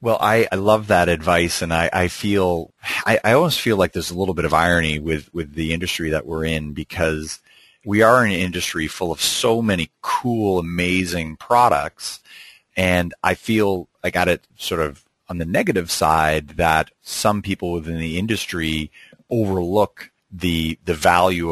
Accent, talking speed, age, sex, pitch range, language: American, 175 wpm, 30-49, male, 80-95 Hz, English